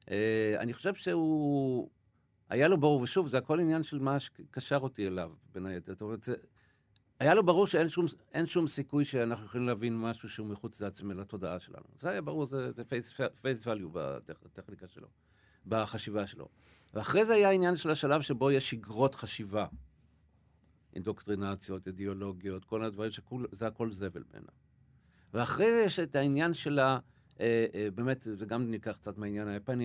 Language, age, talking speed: Hebrew, 50-69, 165 wpm